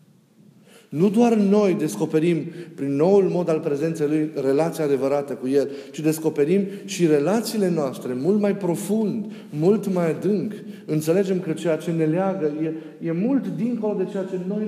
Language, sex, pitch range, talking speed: Romanian, male, 150-200 Hz, 160 wpm